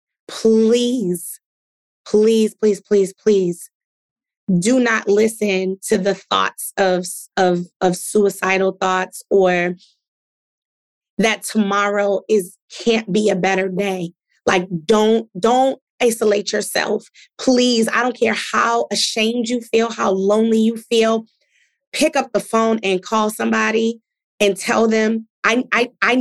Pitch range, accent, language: 190-220 Hz, American, English